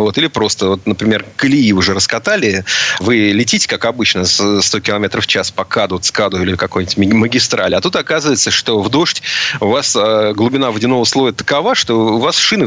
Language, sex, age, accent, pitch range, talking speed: Russian, male, 30-49, native, 95-120 Hz, 180 wpm